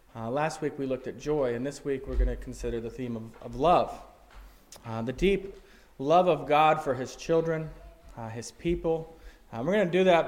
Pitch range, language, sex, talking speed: 125-160 Hz, English, male, 215 wpm